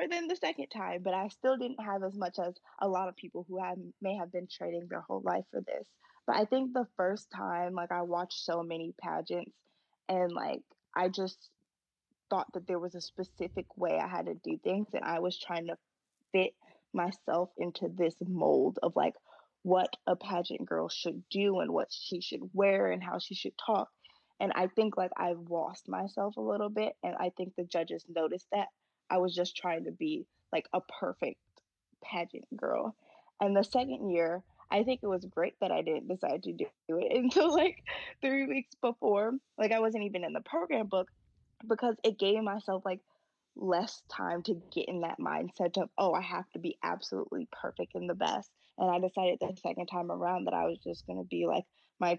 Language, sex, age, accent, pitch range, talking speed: English, female, 20-39, American, 175-210 Hz, 205 wpm